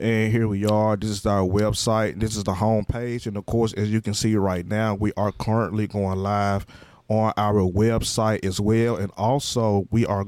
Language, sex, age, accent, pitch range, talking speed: English, male, 20-39, American, 100-115 Hz, 210 wpm